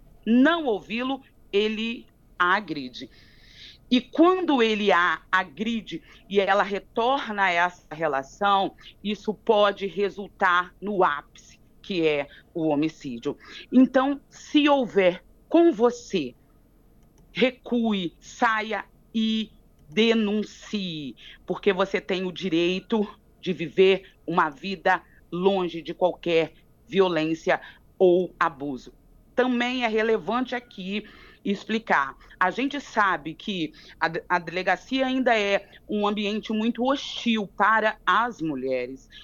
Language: Portuguese